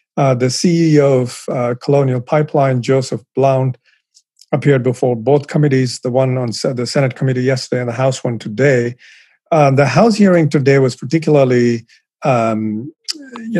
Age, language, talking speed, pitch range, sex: 40-59, English, 150 wpm, 125-145 Hz, male